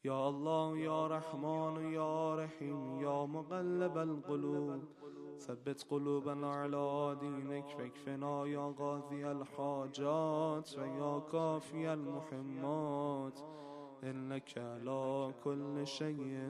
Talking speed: 90 wpm